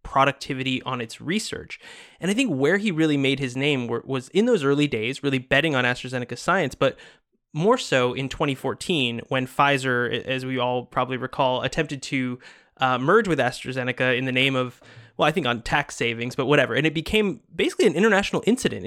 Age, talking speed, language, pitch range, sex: 20-39, 190 wpm, English, 130-165 Hz, male